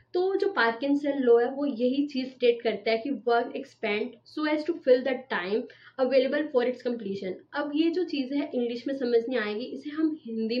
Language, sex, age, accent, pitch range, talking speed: Hindi, female, 20-39, native, 230-280 Hz, 205 wpm